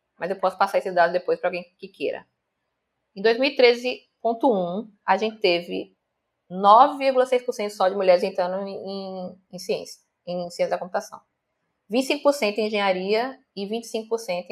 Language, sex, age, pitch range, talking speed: Portuguese, female, 20-39, 190-235 Hz, 140 wpm